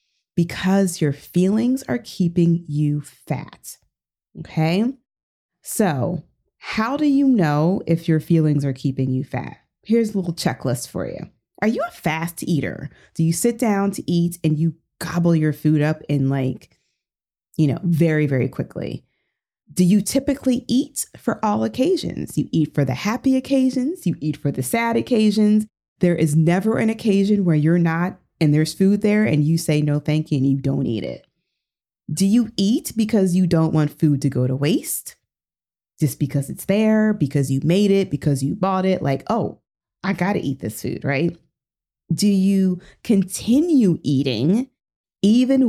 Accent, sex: American, female